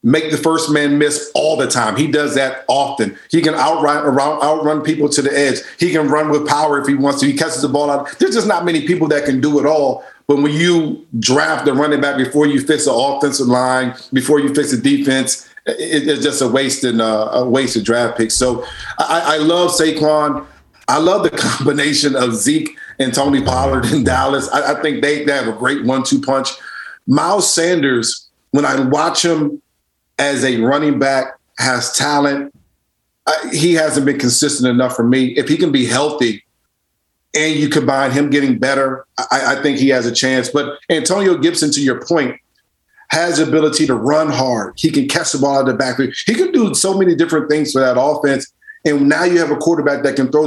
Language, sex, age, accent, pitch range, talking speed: English, male, 50-69, American, 130-155 Hz, 210 wpm